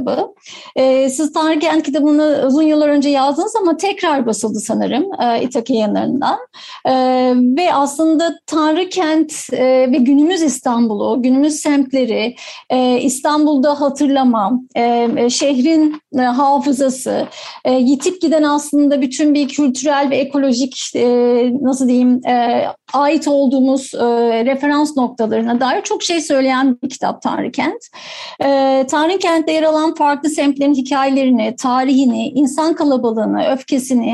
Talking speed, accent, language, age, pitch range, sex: 105 wpm, native, Turkish, 50-69, 260-315 Hz, female